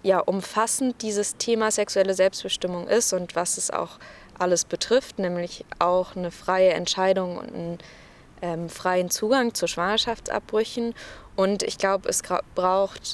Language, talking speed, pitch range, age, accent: German, 140 wpm, 180-205 Hz, 20-39, German